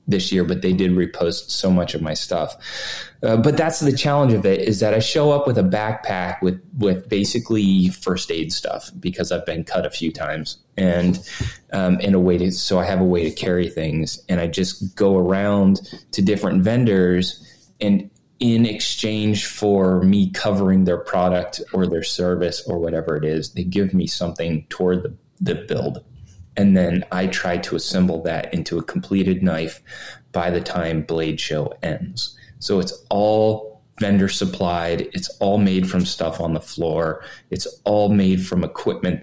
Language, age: English, 20-39